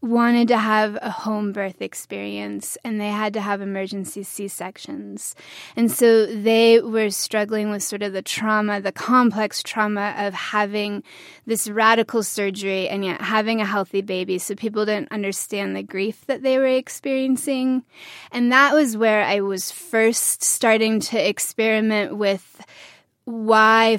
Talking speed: 150 wpm